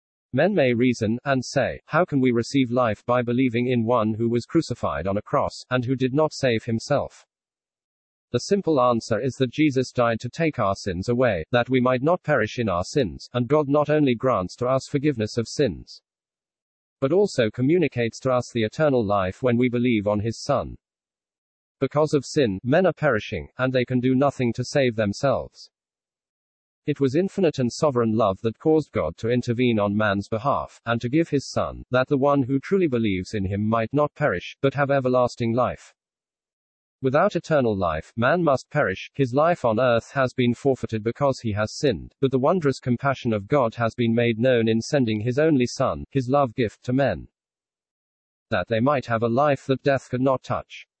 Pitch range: 115-140 Hz